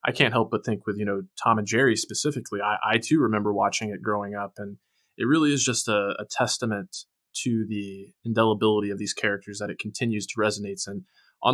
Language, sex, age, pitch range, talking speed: English, male, 20-39, 105-115 Hz, 215 wpm